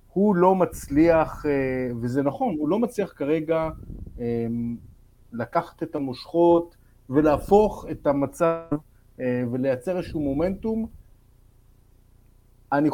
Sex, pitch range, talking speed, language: male, 125-170 Hz, 90 wpm, Hebrew